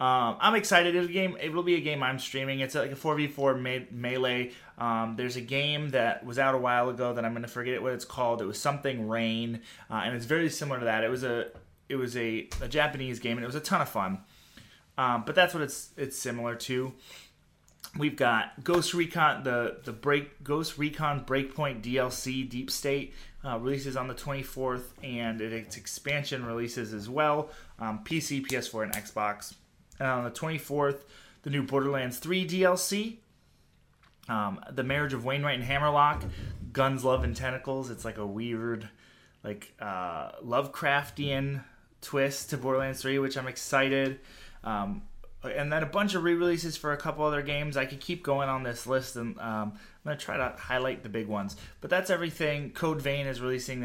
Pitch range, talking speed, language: 120-145 Hz, 185 wpm, English